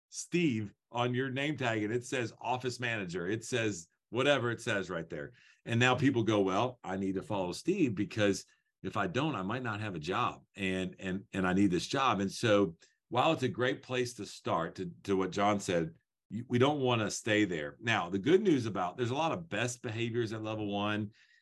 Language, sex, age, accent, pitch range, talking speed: English, male, 40-59, American, 100-125 Hz, 220 wpm